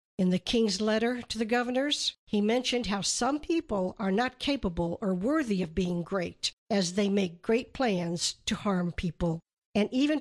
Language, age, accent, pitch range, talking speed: English, 60-79, American, 185-235 Hz, 175 wpm